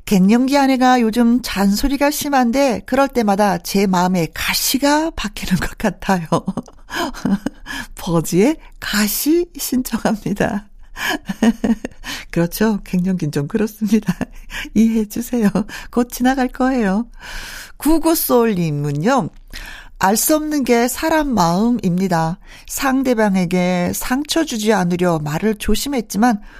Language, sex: Korean, female